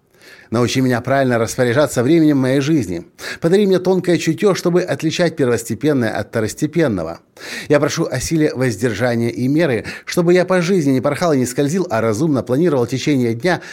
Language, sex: Russian, male